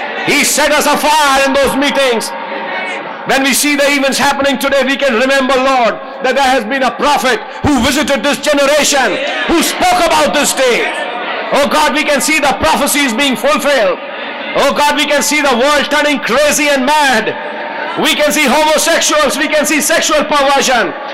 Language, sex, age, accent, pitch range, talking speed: English, male, 50-69, Indian, 260-300 Hz, 175 wpm